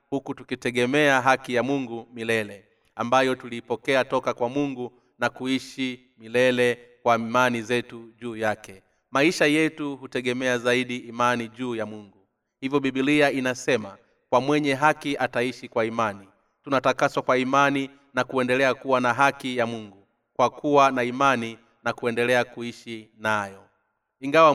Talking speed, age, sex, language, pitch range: 135 wpm, 30-49, male, Swahili, 120-140 Hz